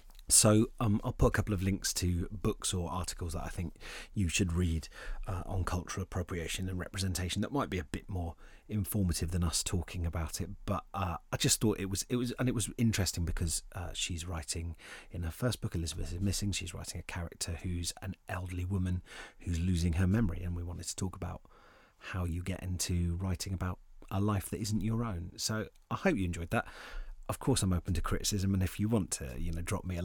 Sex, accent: male, British